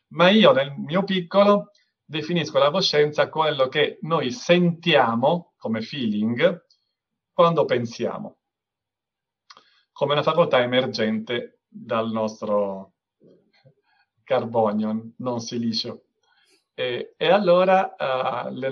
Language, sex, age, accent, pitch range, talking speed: Italian, male, 50-69, native, 120-170 Hz, 95 wpm